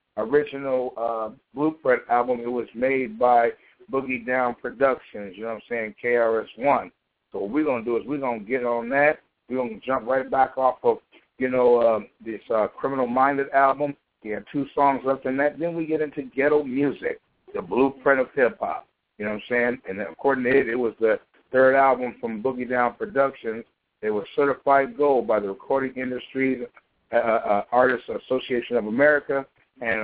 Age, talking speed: 60-79, 190 wpm